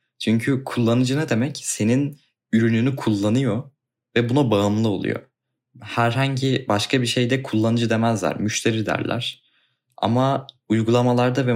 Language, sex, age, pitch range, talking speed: Turkish, male, 20-39, 95-115 Hz, 115 wpm